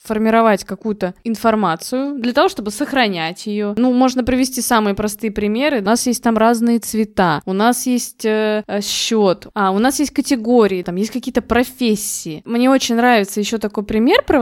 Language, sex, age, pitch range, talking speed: Russian, female, 20-39, 210-260 Hz, 170 wpm